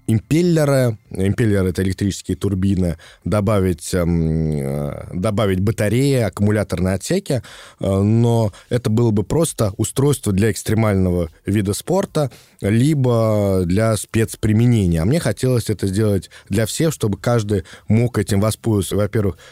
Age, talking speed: 20-39, 110 wpm